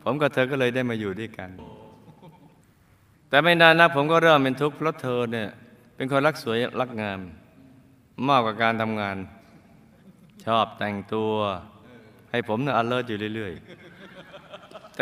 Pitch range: 105-135 Hz